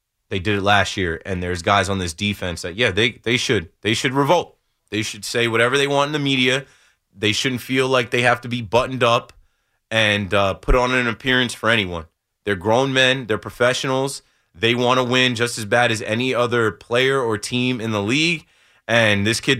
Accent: American